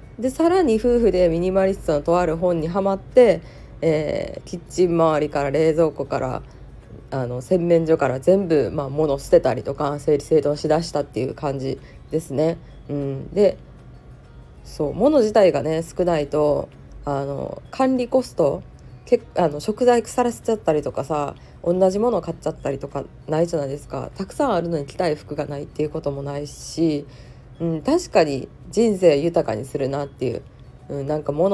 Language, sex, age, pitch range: Japanese, female, 20-39, 145-200 Hz